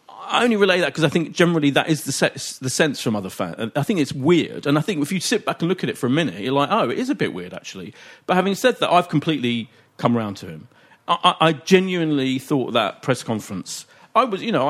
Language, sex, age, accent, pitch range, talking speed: English, male, 40-59, British, 120-175 Hz, 270 wpm